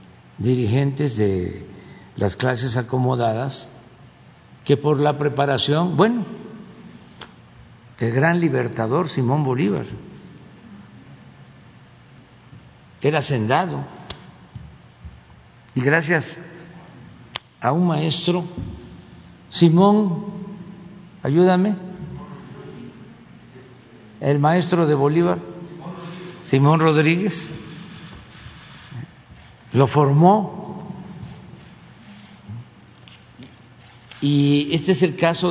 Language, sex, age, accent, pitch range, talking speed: Spanish, male, 60-79, Mexican, 130-170 Hz, 65 wpm